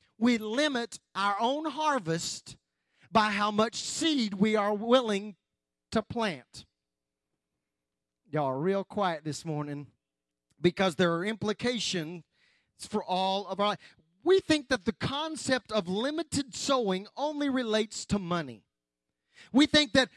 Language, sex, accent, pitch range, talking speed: English, male, American, 175-265 Hz, 130 wpm